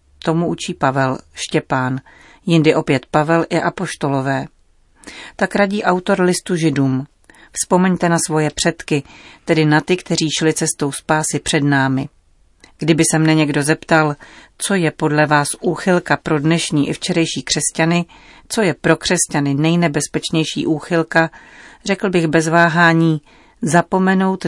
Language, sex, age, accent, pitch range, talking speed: Czech, female, 40-59, native, 145-170 Hz, 130 wpm